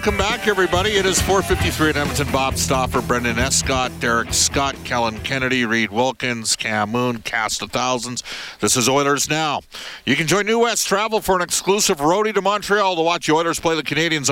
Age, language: 50-69, English